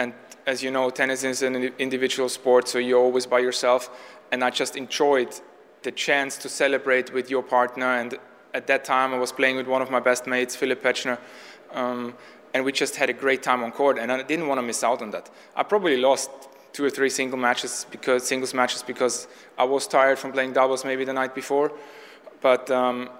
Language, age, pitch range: English, 20-39, 120-135 Hz